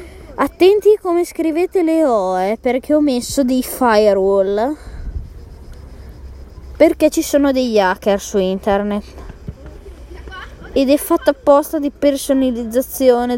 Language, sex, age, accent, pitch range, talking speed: Italian, female, 20-39, native, 205-285 Hz, 110 wpm